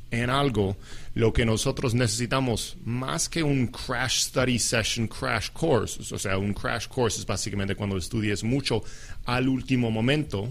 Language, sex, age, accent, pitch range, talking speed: English, male, 40-59, Mexican, 100-125 Hz, 155 wpm